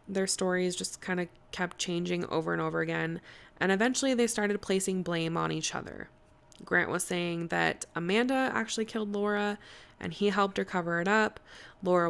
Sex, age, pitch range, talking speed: female, 20-39, 165-200 Hz, 180 wpm